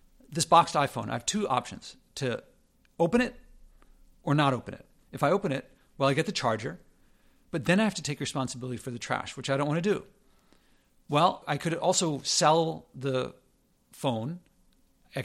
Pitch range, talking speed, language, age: 125-155 Hz, 185 wpm, English, 40-59